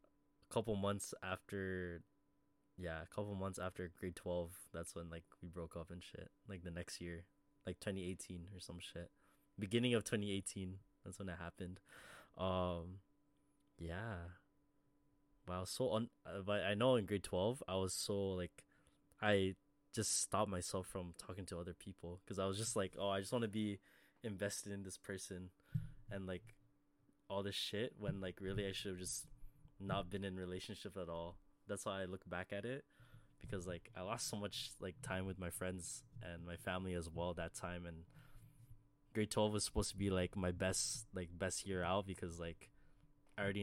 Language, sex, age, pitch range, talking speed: English, male, 20-39, 90-110 Hz, 185 wpm